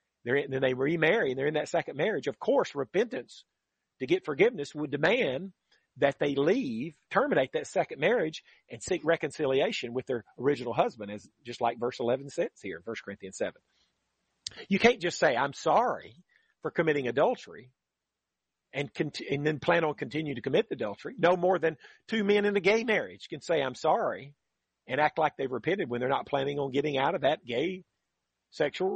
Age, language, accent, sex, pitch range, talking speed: 40-59, English, American, male, 135-195 Hz, 185 wpm